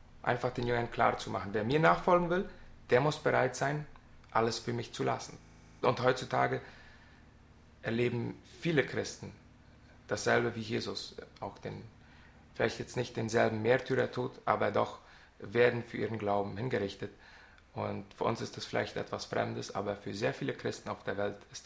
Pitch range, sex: 100-125 Hz, male